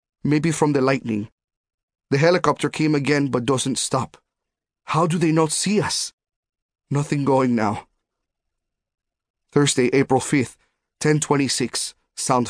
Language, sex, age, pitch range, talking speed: English, male, 30-49, 125-150 Hz, 120 wpm